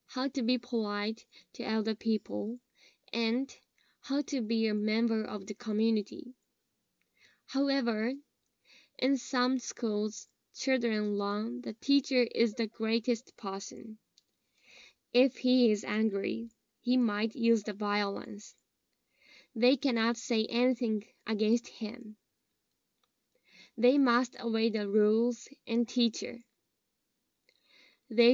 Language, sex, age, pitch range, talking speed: English, female, 10-29, 215-245 Hz, 110 wpm